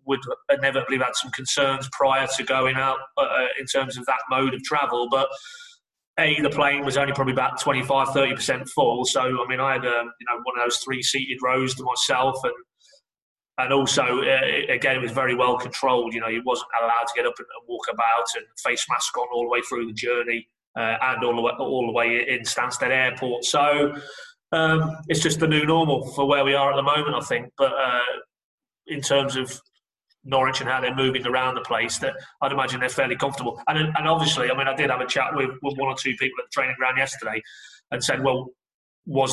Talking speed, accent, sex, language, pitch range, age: 225 wpm, British, male, English, 130-145 Hz, 30-49